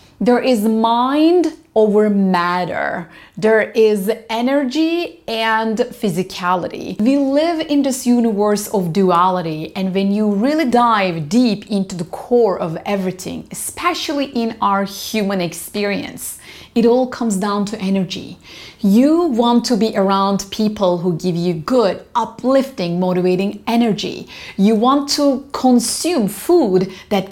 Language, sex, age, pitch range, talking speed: English, female, 30-49, 190-250 Hz, 125 wpm